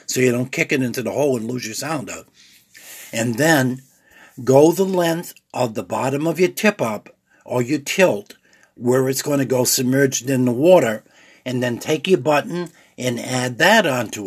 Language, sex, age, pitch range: English, male, 60-79, 120-155 Hz